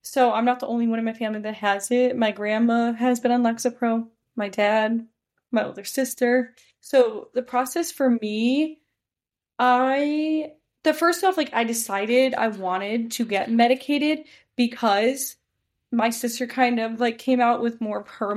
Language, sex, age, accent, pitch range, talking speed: English, female, 10-29, American, 215-250 Hz, 165 wpm